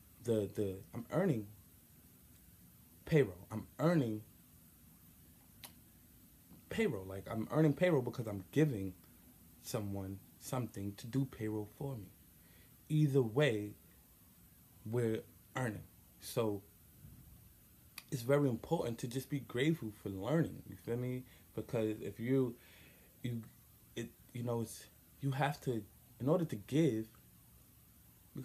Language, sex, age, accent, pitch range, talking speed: English, male, 20-39, American, 100-125 Hz, 115 wpm